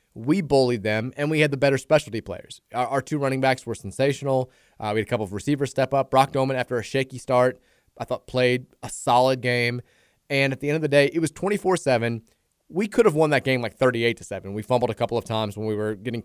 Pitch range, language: 115-140 Hz, English